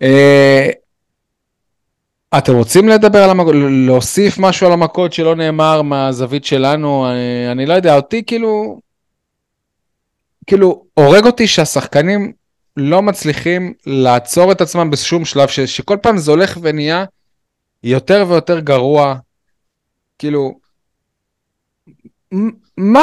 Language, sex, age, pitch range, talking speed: Hebrew, male, 20-39, 135-180 Hz, 110 wpm